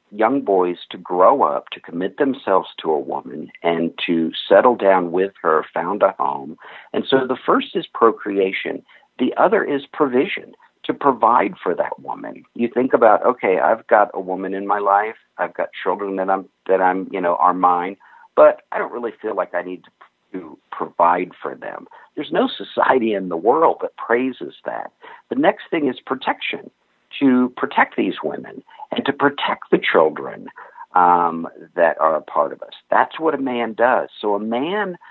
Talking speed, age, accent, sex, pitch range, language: 185 wpm, 50-69, American, male, 90-120 Hz, English